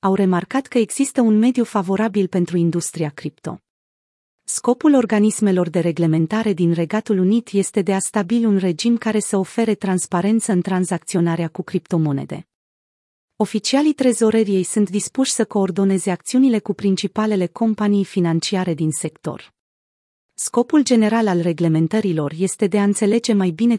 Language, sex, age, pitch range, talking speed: Romanian, female, 30-49, 175-220 Hz, 135 wpm